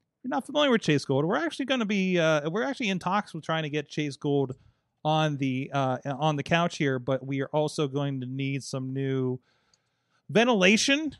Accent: American